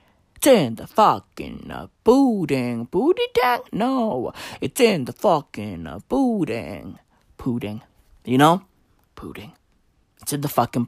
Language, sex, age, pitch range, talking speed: English, male, 20-39, 125-190 Hz, 110 wpm